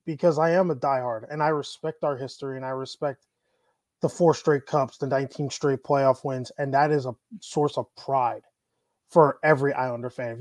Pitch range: 130-160 Hz